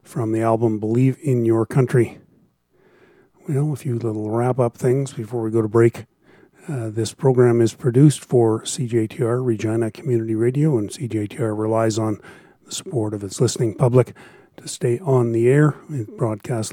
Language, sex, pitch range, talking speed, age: English, male, 115-130 Hz, 160 wpm, 40-59